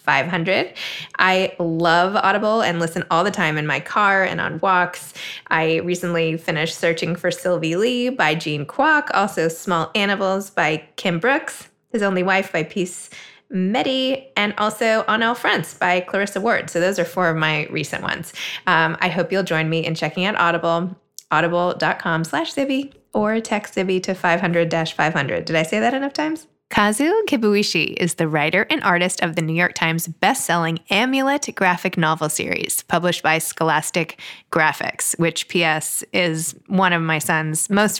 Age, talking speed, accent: 20-39, 165 wpm, American